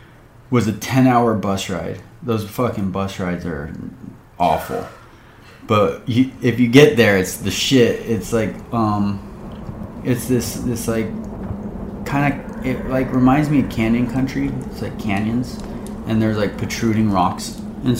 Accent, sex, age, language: American, male, 20-39, English